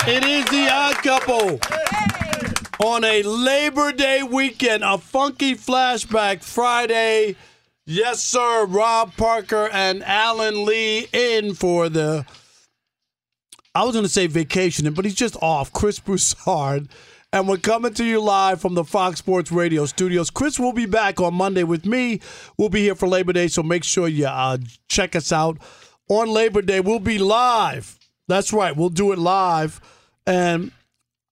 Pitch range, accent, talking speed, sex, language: 180-235 Hz, American, 160 wpm, male, English